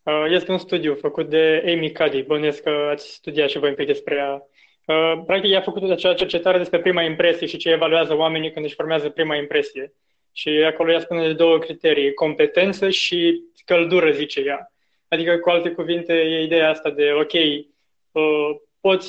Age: 20-39